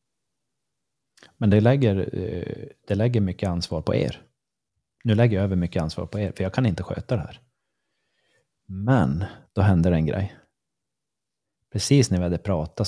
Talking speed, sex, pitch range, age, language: 160 wpm, male, 90-130 Hz, 30-49, Swedish